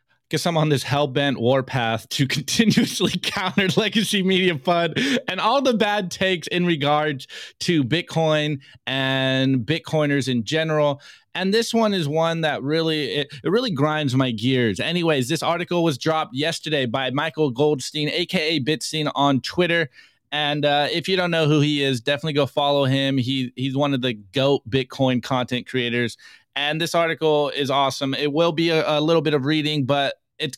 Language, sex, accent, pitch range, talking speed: English, male, American, 140-175 Hz, 175 wpm